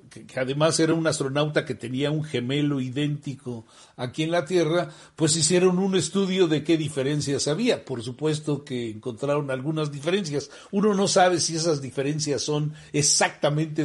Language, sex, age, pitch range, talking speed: Spanish, male, 60-79, 130-165 Hz, 155 wpm